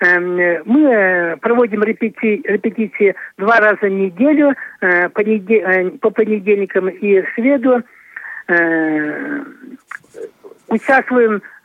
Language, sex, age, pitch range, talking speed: Russian, male, 60-79, 205-255 Hz, 60 wpm